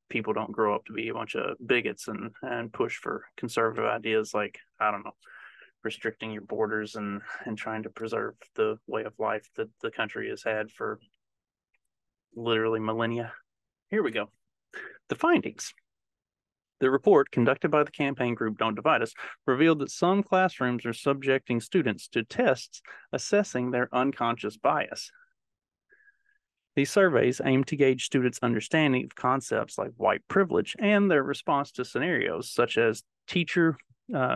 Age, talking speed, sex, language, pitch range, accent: 30-49, 155 wpm, male, English, 120-180 Hz, American